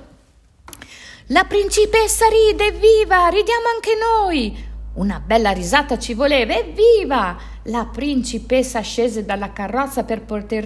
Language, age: Italian, 50-69